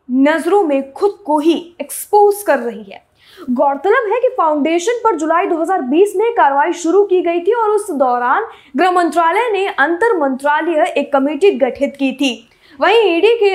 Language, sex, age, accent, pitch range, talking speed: Hindi, female, 20-39, native, 280-395 Hz, 160 wpm